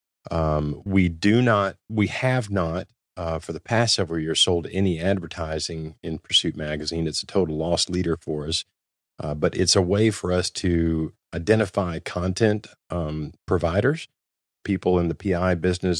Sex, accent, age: male, American, 40-59